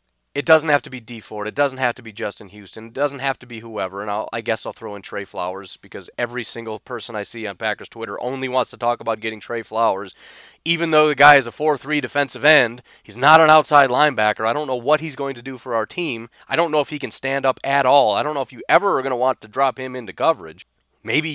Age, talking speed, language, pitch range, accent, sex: 30-49, 275 wpm, English, 115-145 Hz, American, male